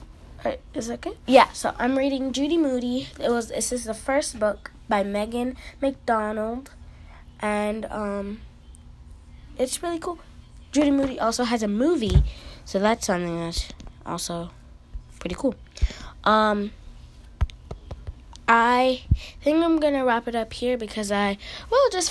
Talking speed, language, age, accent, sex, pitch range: 135 wpm, English, 20-39, American, female, 170-255 Hz